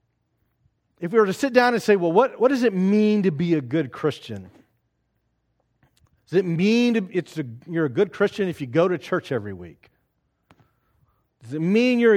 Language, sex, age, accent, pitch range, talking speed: English, male, 40-59, American, 125-190 Hz, 180 wpm